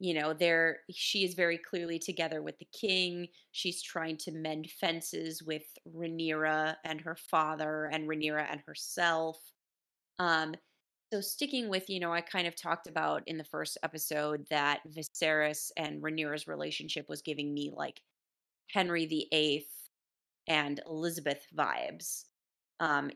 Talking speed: 145 wpm